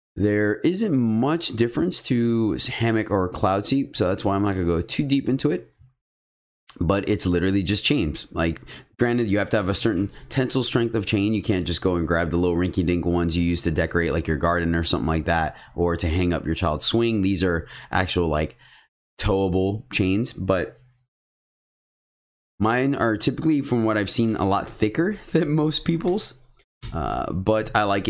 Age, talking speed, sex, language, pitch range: 20-39, 190 wpm, male, English, 85-115 Hz